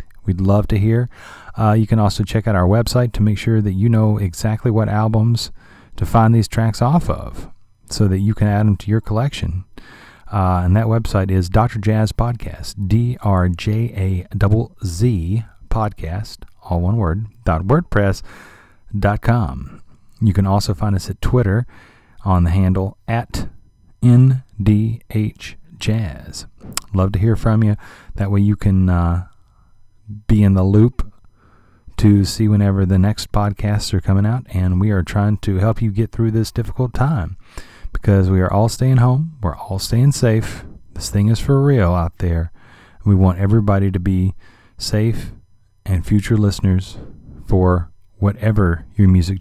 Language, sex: English, male